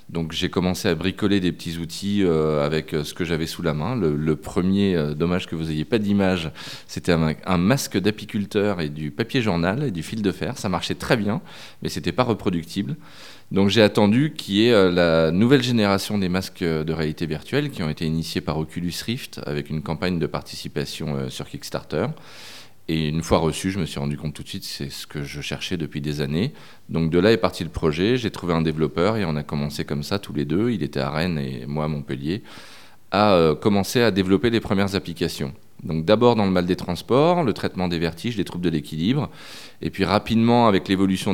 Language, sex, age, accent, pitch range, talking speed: French, male, 20-39, French, 80-100 Hz, 215 wpm